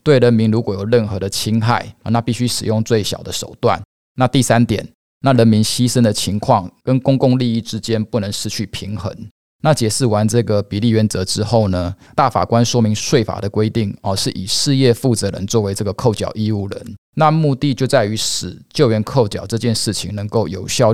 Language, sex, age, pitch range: Chinese, male, 20-39, 100-120 Hz